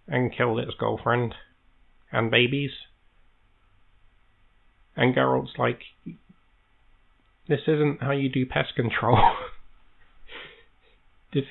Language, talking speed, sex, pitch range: English, 90 wpm, male, 95-140 Hz